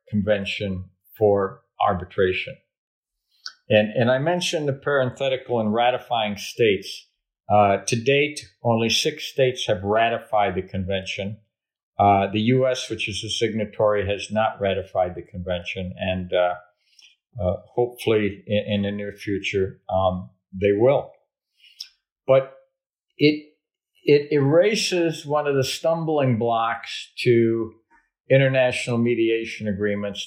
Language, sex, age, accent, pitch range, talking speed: English, male, 50-69, American, 100-125 Hz, 115 wpm